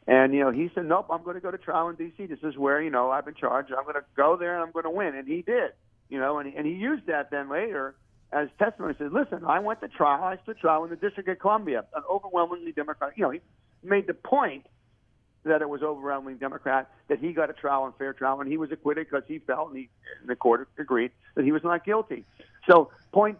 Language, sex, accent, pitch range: English, male, American, 130-165 Hz